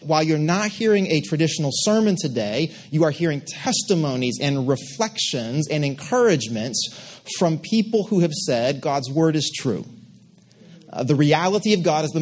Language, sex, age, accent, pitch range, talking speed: English, male, 30-49, American, 135-180 Hz, 155 wpm